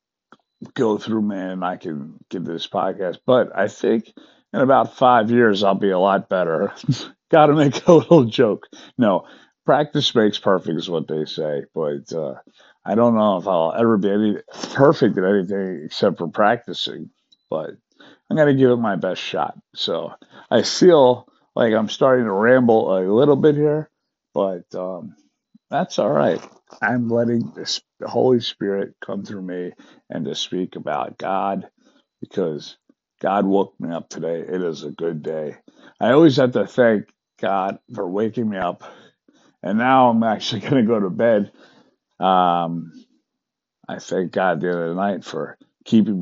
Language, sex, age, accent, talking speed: English, male, 50-69, American, 165 wpm